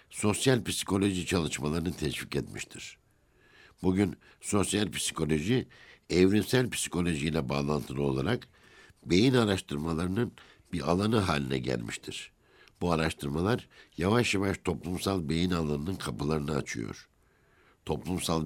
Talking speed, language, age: 90 wpm, Turkish, 60-79